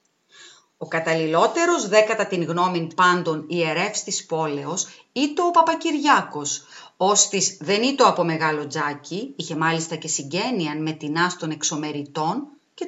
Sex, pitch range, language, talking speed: female, 160-255 Hz, Greek, 150 wpm